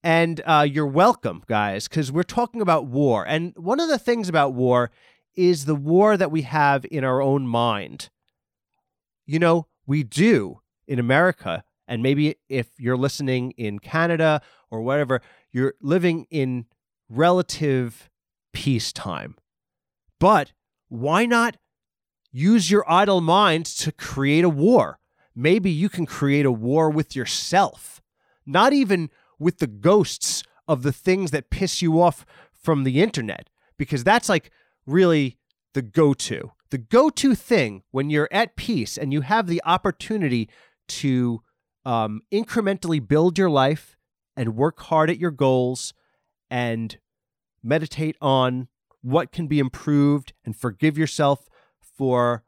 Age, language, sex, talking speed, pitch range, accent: 30-49, English, male, 140 wpm, 130-175 Hz, American